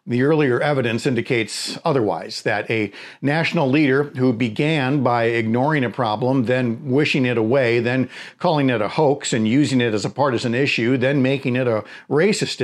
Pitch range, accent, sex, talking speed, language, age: 120-155 Hz, American, male, 170 wpm, English, 50-69